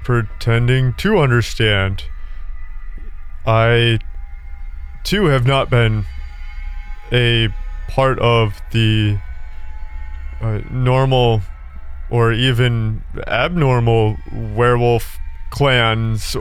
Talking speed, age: 70 wpm, 20-39